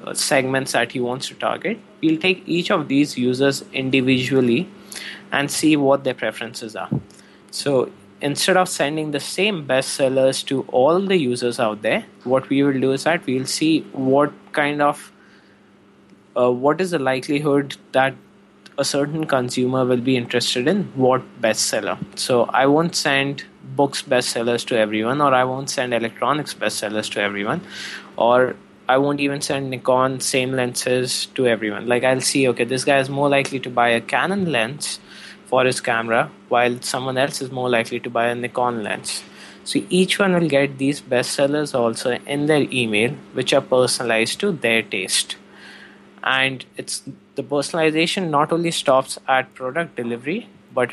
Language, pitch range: English, 125-145 Hz